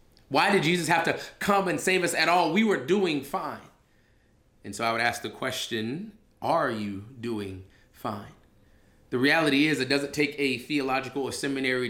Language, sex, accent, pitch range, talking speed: English, male, American, 120-150 Hz, 180 wpm